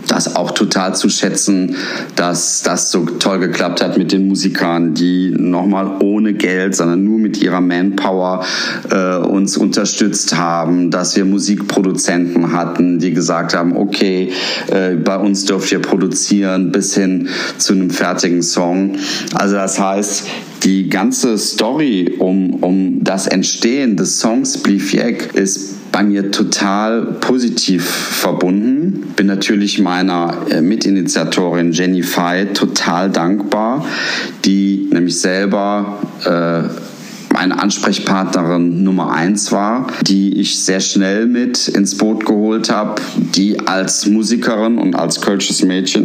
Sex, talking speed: male, 130 wpm